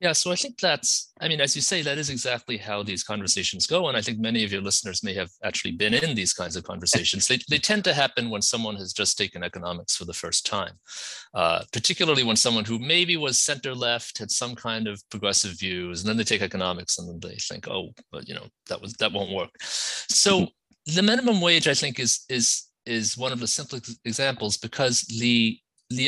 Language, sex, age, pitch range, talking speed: English, male, 30-49, 100-140 Hz, 225 wpm